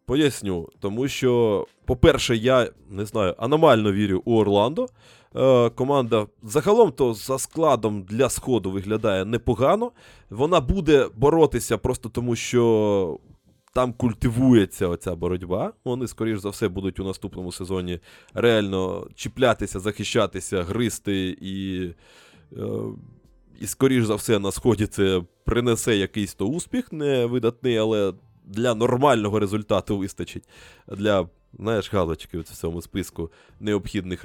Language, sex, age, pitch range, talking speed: Ukrainian, male, 20-39, 95-125 Hz, 120 wpm